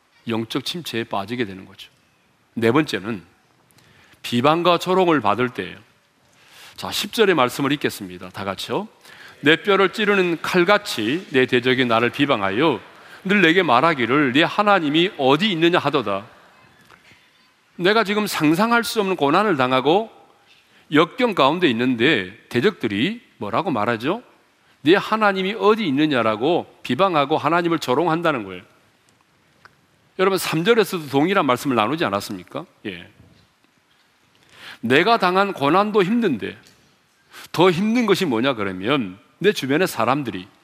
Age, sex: 40-59, male